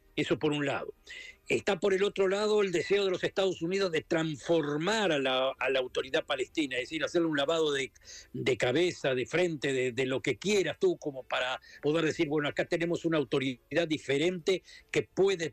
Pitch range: 140-185 Hz